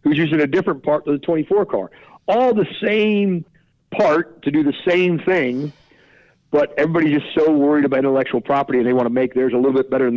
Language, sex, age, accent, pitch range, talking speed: English, male, 50-69, American, 125-160 Hz, 220 wpm